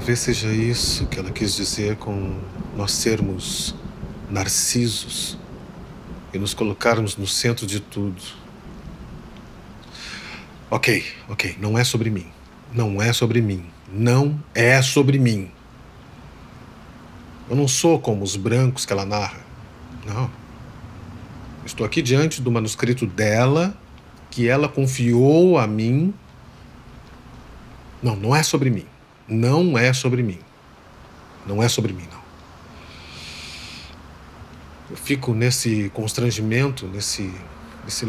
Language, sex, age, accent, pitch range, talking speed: Portuguese, male, 40-59, Brazilian, 100-130 Hz, 115 wpm